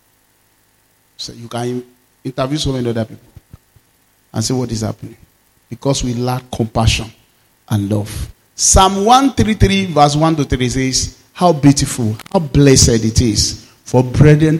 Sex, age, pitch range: male, 40-59, 115-145 Hz